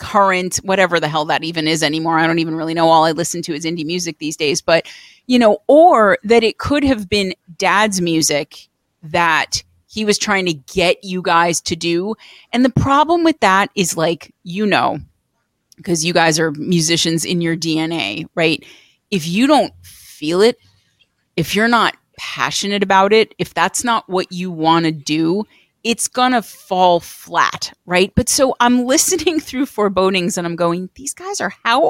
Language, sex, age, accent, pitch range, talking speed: English, female, 30-49, American, 165-255 Hz, 185 wpm